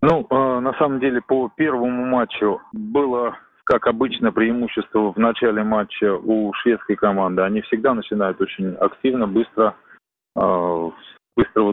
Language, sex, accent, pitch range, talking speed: Russian, male, native, 100-120 Hz, 140 wpm